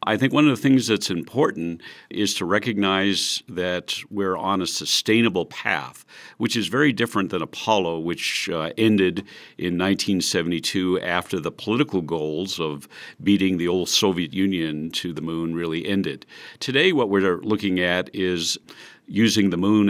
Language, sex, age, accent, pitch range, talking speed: English, male, 50-69, American, 85-100 Hz, 155 wpm